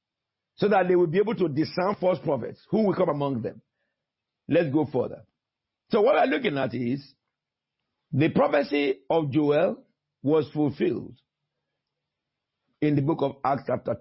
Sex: male